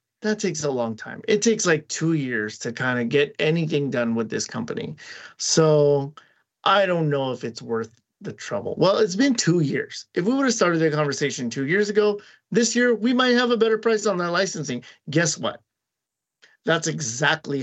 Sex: male